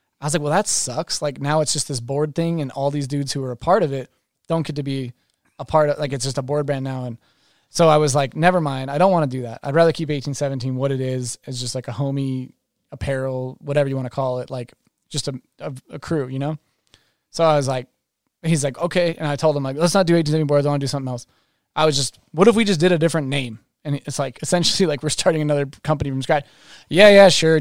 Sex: male